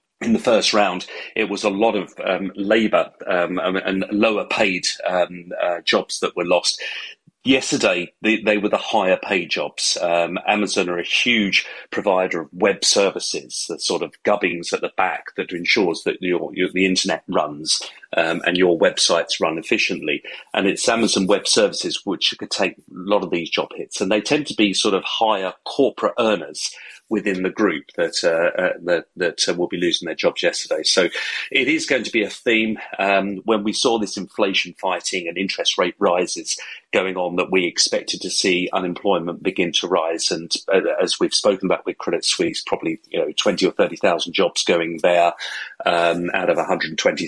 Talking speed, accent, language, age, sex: 190 wpm, British, English, 40-59, male